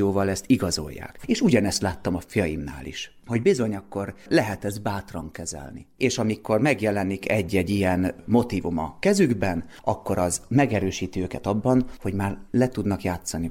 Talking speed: 145 wpm